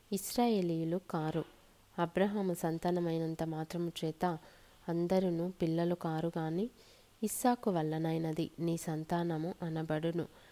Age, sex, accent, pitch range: 20-39, female, native, 160-190 Hz